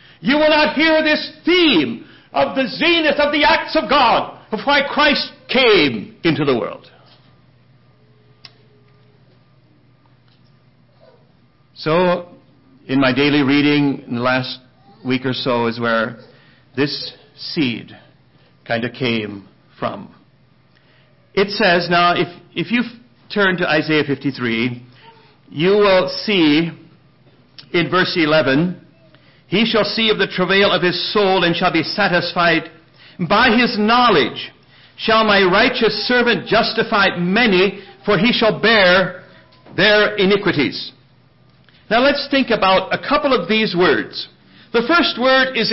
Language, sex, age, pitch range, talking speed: English, male, 60-79, 150-245 Hz, 125 wpm